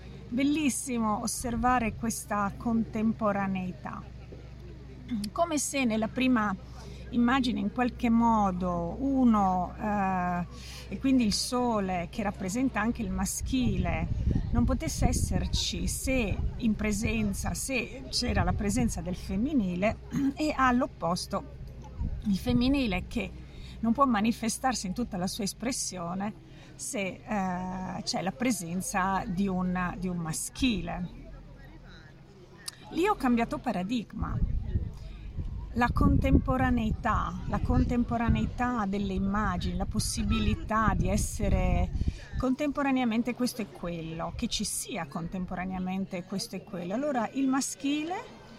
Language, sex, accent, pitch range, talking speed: Italian, female, native, 180-245 Hz, 105 wpm